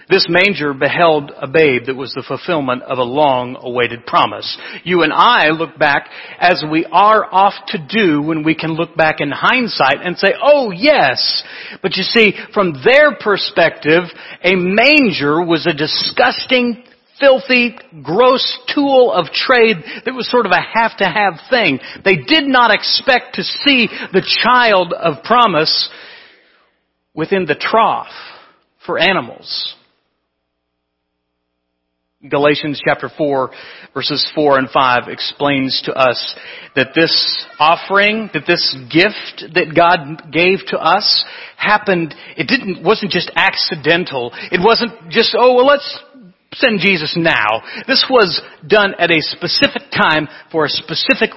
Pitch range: 145-210 Hz